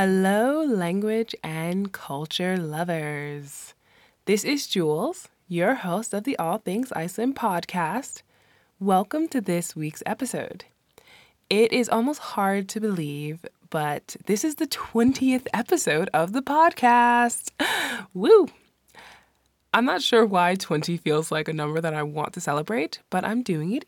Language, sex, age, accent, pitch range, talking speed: English, female, 20-39, American, 160-225 Hz, 140 wpm